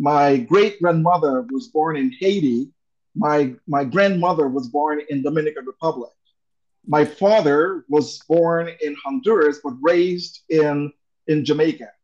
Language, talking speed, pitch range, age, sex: English, 125 wpm, 135-170 Hz, 50-69, male